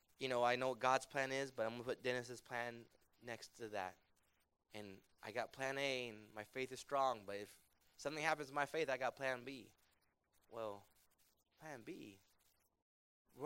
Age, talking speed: 20-39, 190 wpm